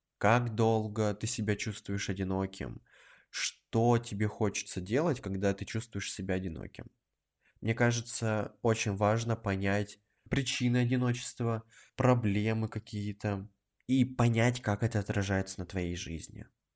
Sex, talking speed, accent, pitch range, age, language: male, 115 wpm, native, 105-130 Hz, 20-39, Russian